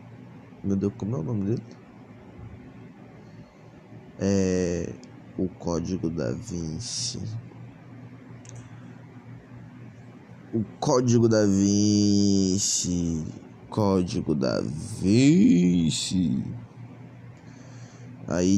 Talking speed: 65 wpm